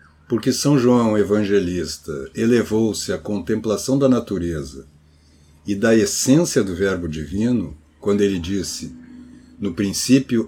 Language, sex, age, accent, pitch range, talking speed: Portuguese, male, 60-79, Brazilian, 75-115 Hz, 115 wpm